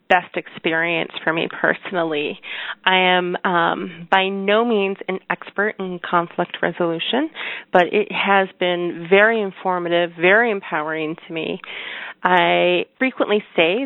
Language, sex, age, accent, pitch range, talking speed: English, female, 30-49, American, 165-205 Hz, 125 wpm